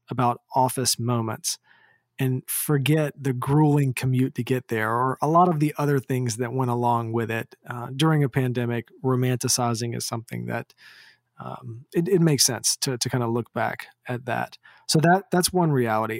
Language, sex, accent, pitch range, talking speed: English, male, American, 120-145 Hz, 180 wpm